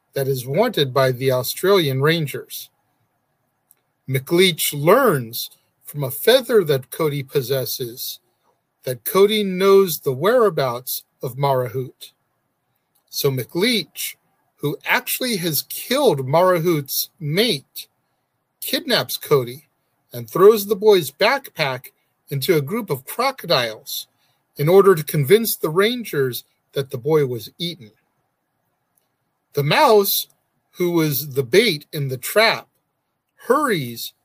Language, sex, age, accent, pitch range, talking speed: English, male, 50-69, American, 135-190 Hz, 110 wpm